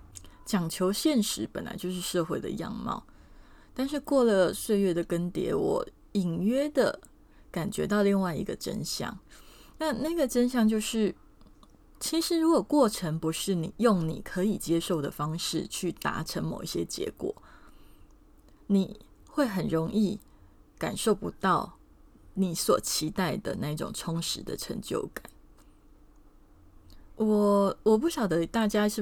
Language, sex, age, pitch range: Chinese, female, 20-39, 175-230 Hz